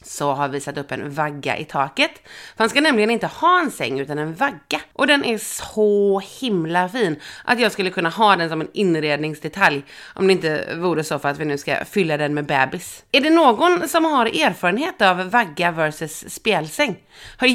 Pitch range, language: 170-245 Hz, Swedish